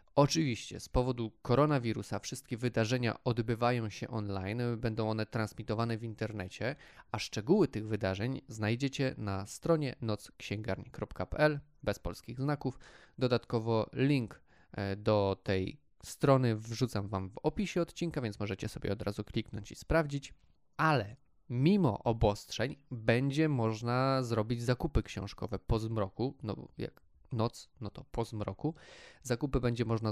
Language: Polish